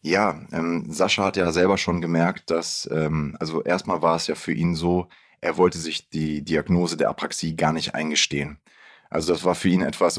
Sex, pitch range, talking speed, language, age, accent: male, 85-95 Hz, 200 wpm, German, 20-39, German